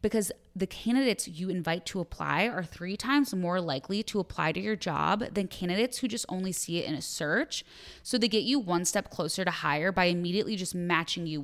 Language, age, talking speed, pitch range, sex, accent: English, 20-39, 215 wpm, 170-225 Hz, female, American